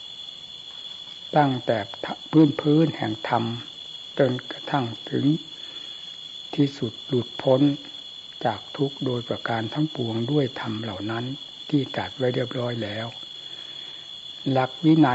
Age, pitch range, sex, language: 60-79, 115-140 Hz, male, Thai